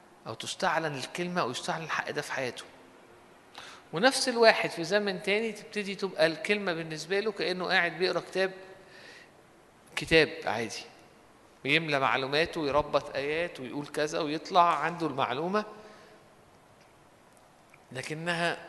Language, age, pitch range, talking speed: Arabic, 50-69, 140-185 Hz, 110 wpm